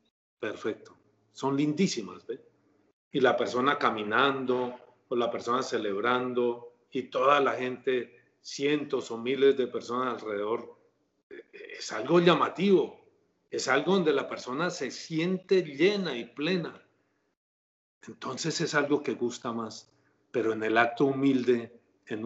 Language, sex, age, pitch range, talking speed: Spanish, male, 40-59, 110-130 Hz, 125 wpm